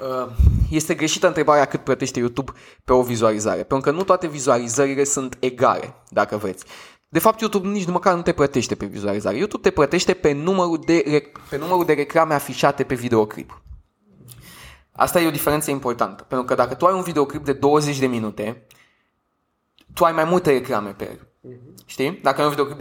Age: 20-39